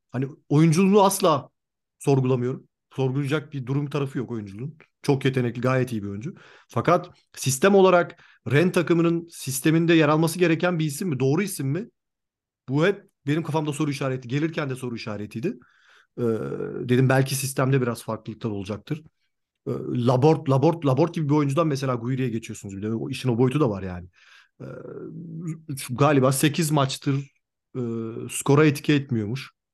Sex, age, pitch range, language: male, 40-59, 130-165 Hz, Turkish